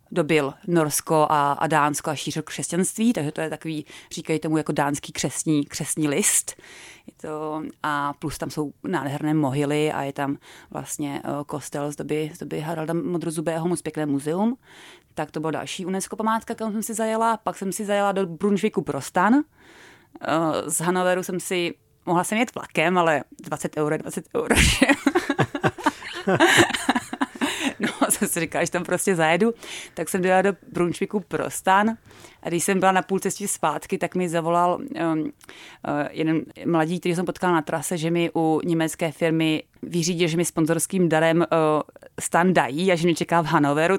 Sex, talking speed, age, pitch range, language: female, 165 wpm, 30-49, 155-195 Hz, Czech